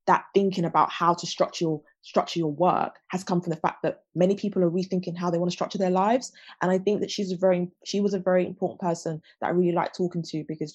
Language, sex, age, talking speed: English, female, 20-39, 255 wpm